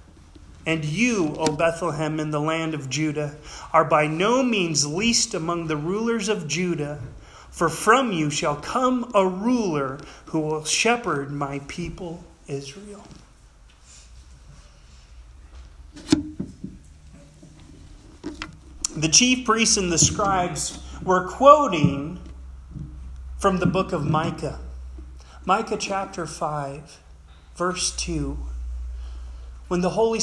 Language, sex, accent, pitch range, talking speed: English, male, American, 150-215 Hz, 105 wpm